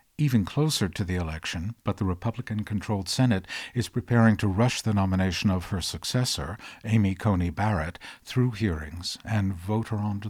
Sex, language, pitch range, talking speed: male, English, 90-115 Hz, 155 wpm